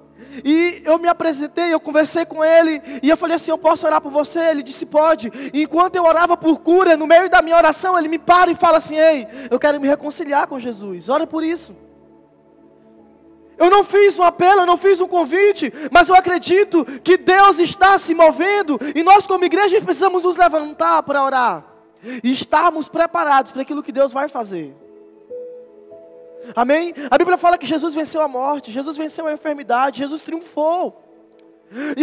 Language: Portuguese